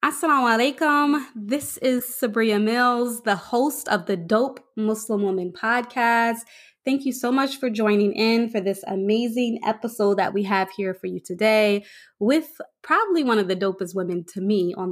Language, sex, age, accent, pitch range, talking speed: English, female, 20-39, American, 195-235 Hz, 165 wpm